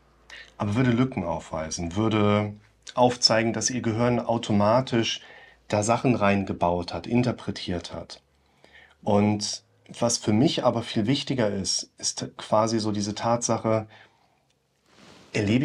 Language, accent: German, German